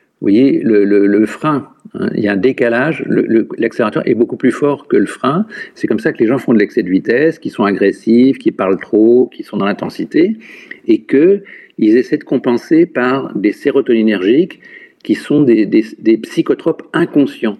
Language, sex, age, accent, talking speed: French, male, 50-69, French, 200 wpm